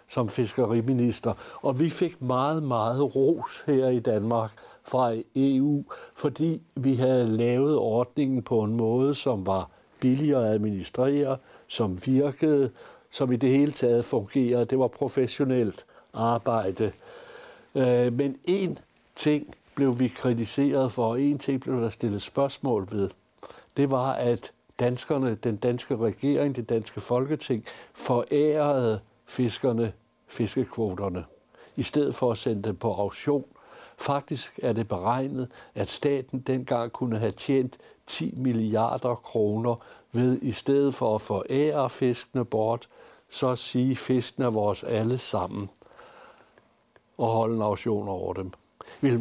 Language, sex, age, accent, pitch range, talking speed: Danish, male, 60-79, native, 115-135 Hz, 135 wpm